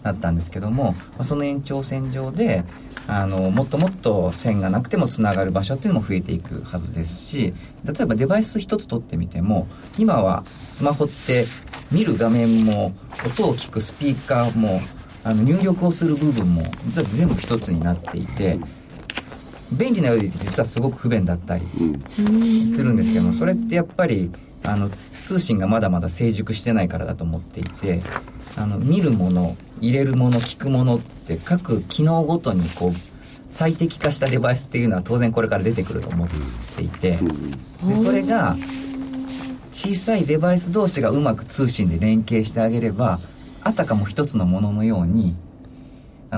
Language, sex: Japanese, male